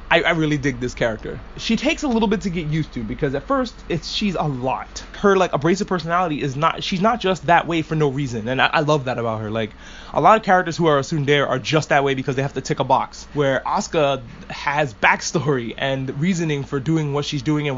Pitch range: 130-175 Hz